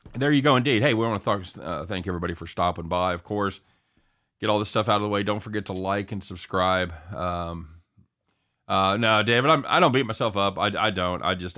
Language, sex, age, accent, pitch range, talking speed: English, male, 40-59, American, 85-105 Hz, 240 wpm